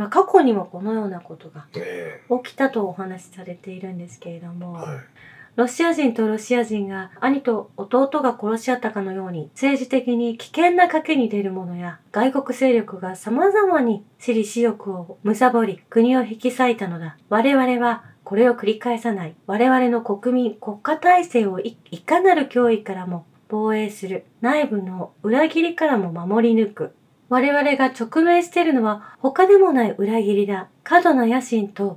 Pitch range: 195-260 Hz